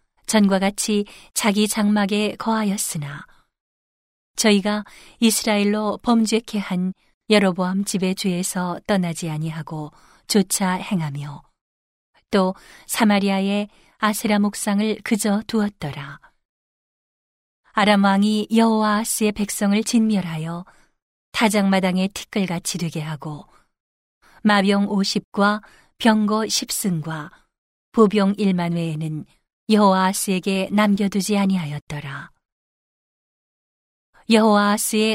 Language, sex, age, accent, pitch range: Korean, female, 40-59, native, 185-215 Hz